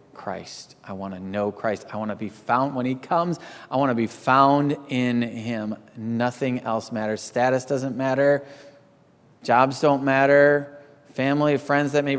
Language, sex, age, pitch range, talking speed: English, male, 30-49, 110-130 Hz, 165 wpm